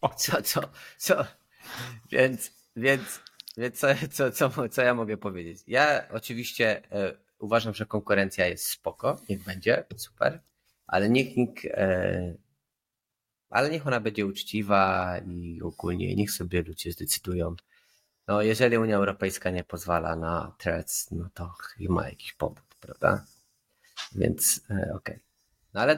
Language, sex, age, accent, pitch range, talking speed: Polish, male, 30-49, native, 90-110 Hz, 140 wpm